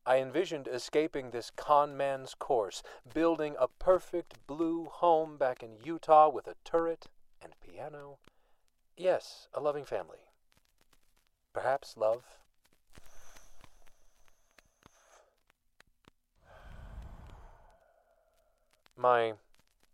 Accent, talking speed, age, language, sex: American, 80 wpm, 40-59, English, male